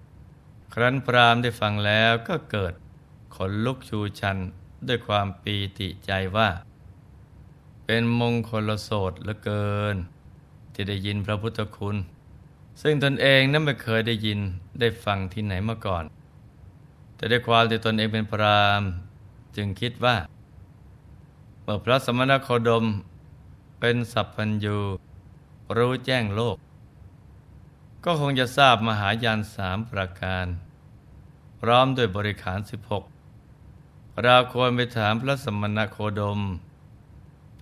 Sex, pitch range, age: male, 100-115 Hz, 20-39